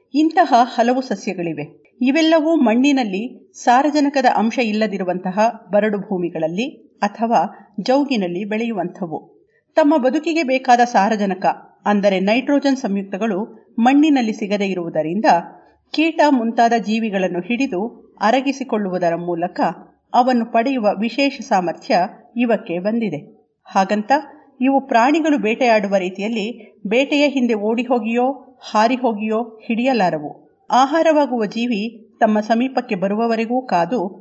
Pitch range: 200-260 Hz